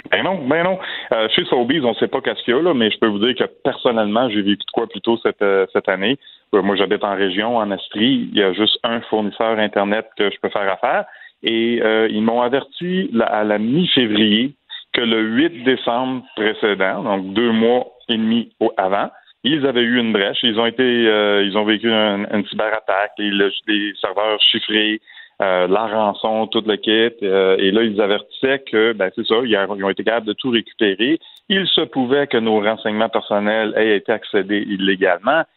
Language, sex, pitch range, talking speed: French, male, 105-120 Hz, 205 wpm